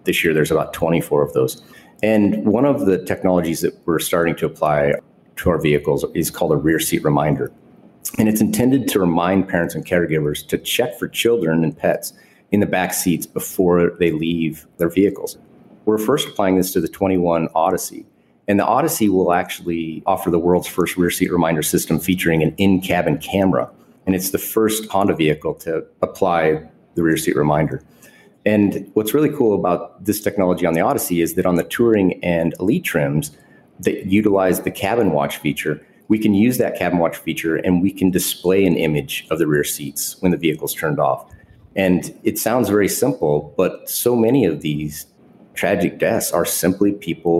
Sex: male